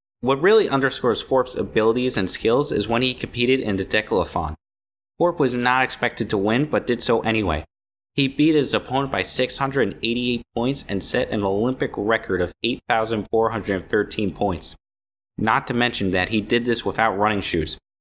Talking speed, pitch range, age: 165 wpm, 100-125 Hz, 20-39